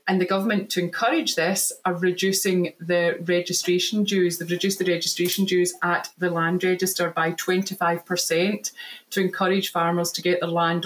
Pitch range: 175-190 Hz